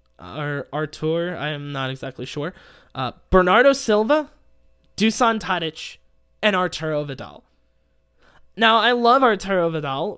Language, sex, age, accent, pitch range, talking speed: English, male, 20-39, American, 135-180 Hz, 110 wpm